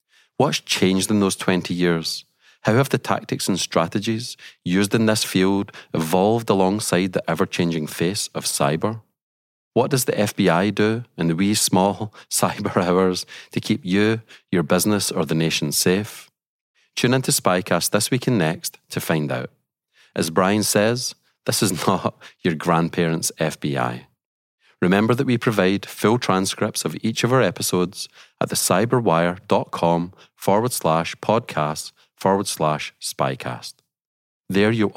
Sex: male